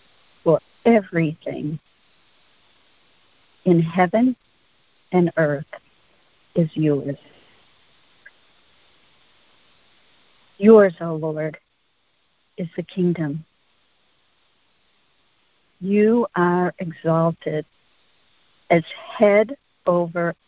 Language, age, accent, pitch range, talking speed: English, 50-69, American, 155-180 Hz, 55 wpm